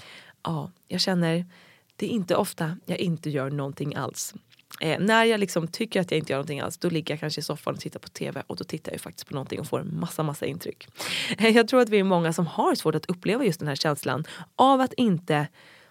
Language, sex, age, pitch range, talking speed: English, female, 20-39, 155-200 Hz, 250 wpm